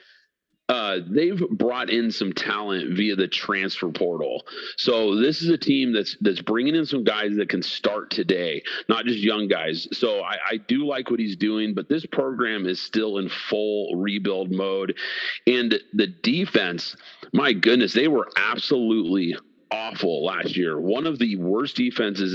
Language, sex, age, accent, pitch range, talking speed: English, male, 40-59, American, 95-125 Hz, 170 wpm